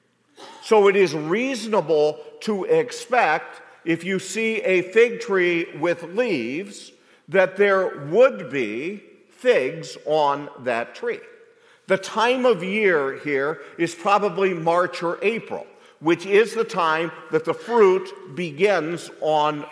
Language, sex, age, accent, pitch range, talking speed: English, male, 50-69, American, 170-250 Hz, 125 wpm